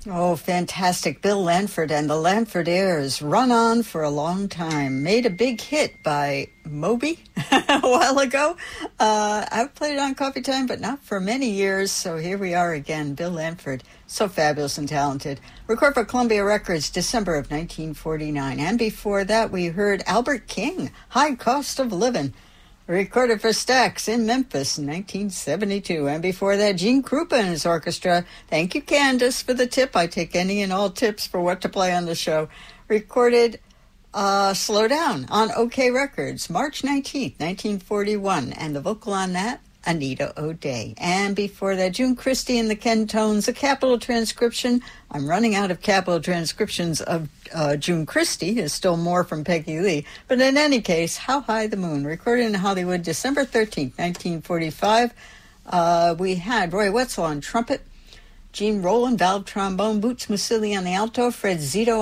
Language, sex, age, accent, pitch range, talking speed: English, female, 60-79, American, 170-230 Hz, 170 wpm